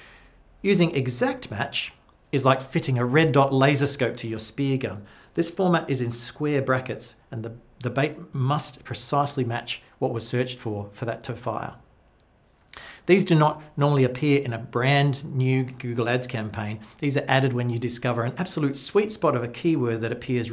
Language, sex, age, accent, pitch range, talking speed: English, male, 40-59, Australian, 115-140 Hz, 185 wpm